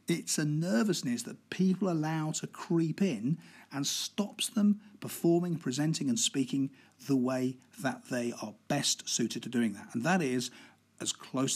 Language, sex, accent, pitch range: English, male, British, 125-180 Hz